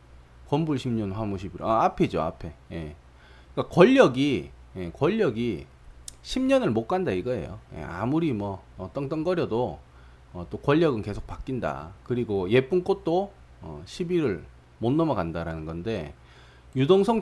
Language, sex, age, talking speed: English, male, 30-49, 120 wpm